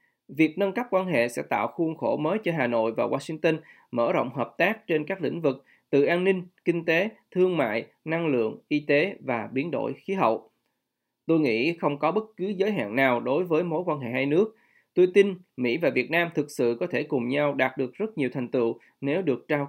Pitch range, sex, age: 135-175 Hz, male, 20-39